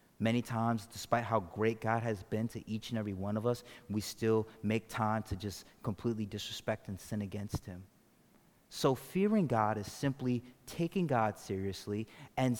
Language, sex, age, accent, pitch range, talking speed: English, male, 30-49, American, 100-120 Hz, 170 wpm